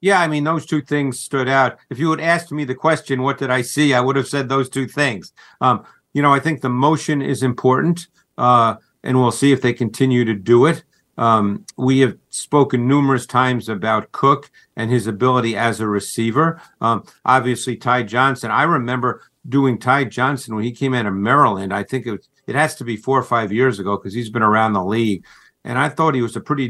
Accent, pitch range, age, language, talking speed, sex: American, 115-140 Hz, 50-69, English, 225 wpm, male